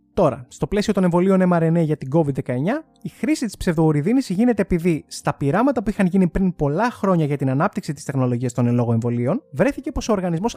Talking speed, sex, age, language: 200 wpm, male, 20-39, Greek